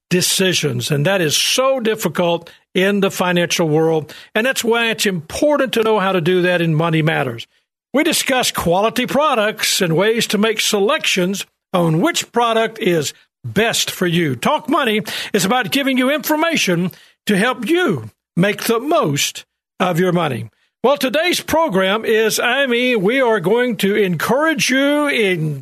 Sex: male